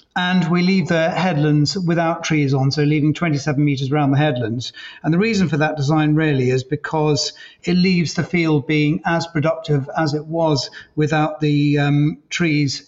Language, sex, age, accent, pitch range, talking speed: English, male, 40-59, British, 145-165 Hz, 175 wpm